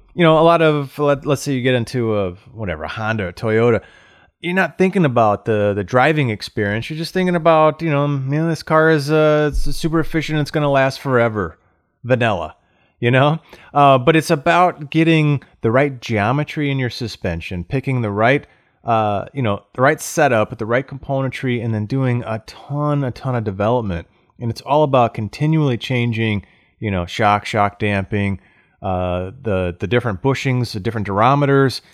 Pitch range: 105-145 Hz